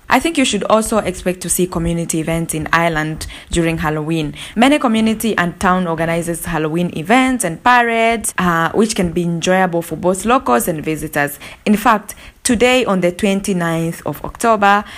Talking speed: 165 wpm